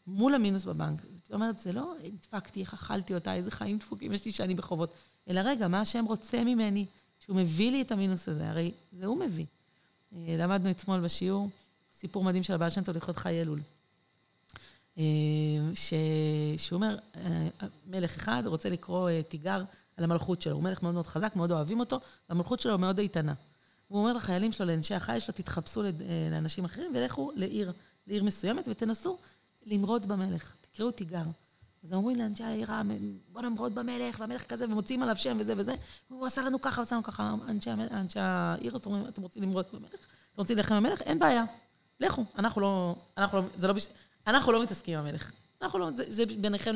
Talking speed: 170 wpm